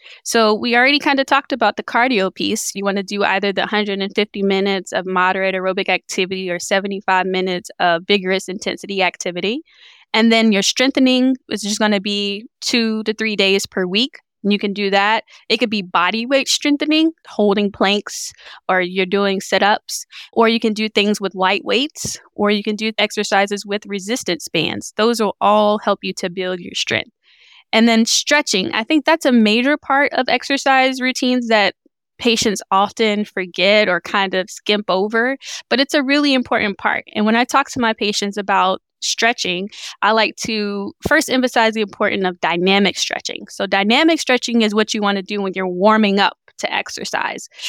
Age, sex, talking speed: 10-29, female, 185 wpm